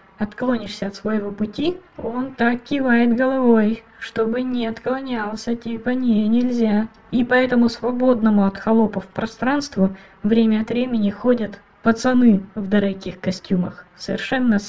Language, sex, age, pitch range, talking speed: Russian, female, 20-39, 200-235 Hz, 120 wpm